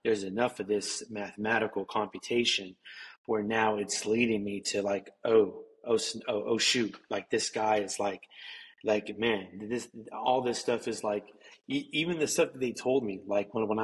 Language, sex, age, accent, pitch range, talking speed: English, male, 30-49, American, 100-115 Hz, 180 wpm